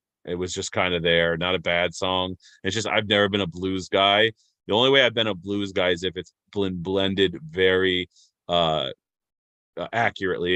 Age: 30-49